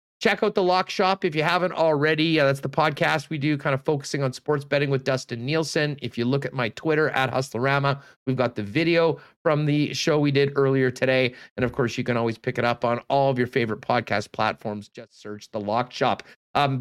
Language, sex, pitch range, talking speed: English, male, 125-150 Hz, 230 wpm